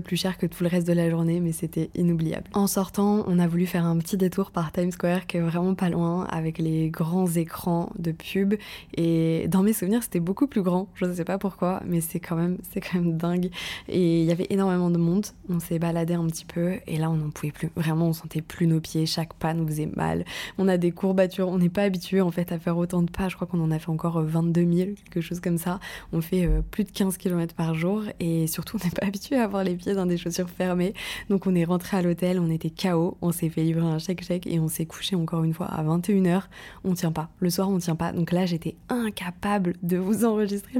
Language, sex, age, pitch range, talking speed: French, female, 20-39, 170-190 Hz, 260 wpm